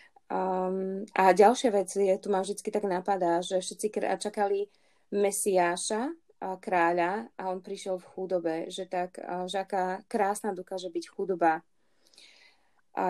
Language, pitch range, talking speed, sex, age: Slovak, 180-205 Hz, 140 wpm, female, 20-39